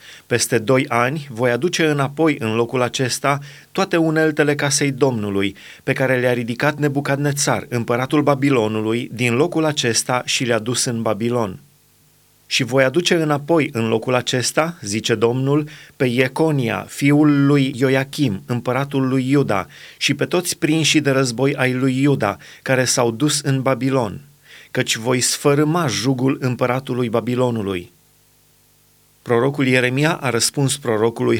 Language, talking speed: Romanian, 135 wpm